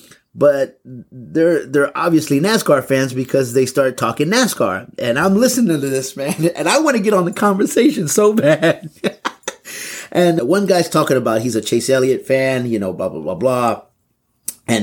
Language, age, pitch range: English, 30-49, 110-140 Hz